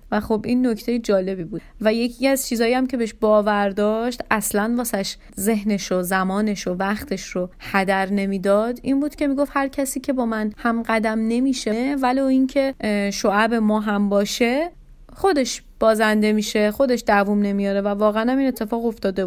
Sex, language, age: female, Persian, 30-49